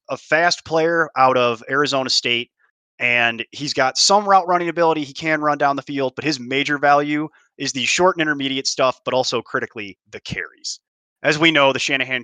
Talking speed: 195 wpm